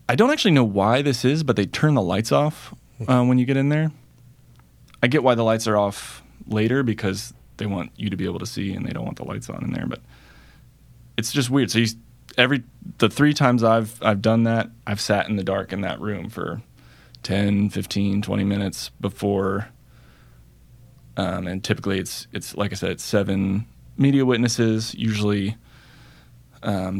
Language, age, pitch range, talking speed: English, 20-39, 95-120 Hz, 195 wpm